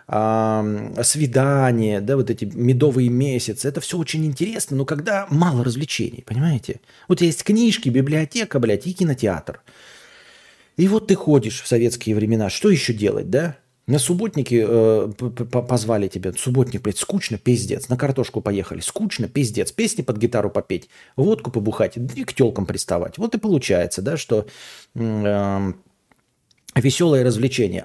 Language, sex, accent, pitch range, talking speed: Russian, male, native, 115-165 Hz, 140 wpm